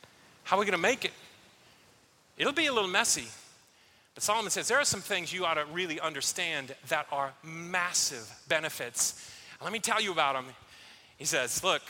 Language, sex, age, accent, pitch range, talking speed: English, male, 30-49, American, 140-175 Hz, 185 wpm